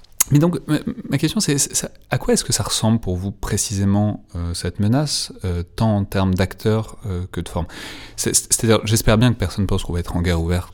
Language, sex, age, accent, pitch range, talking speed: French, male, 30-49, French, 85-110 Hz, 235 wpm